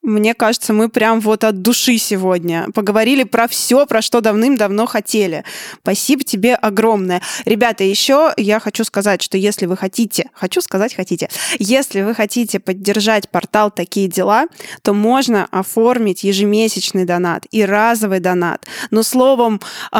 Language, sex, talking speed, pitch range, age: Russian, female, 140 wpm, 195-225 Hz, 20-39